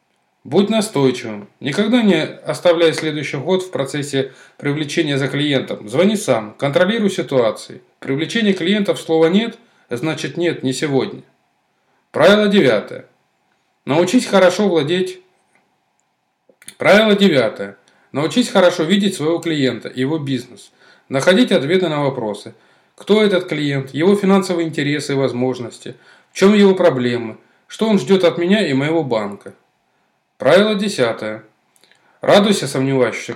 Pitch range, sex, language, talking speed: 135-190 Hz, male, Russian, 120 wpm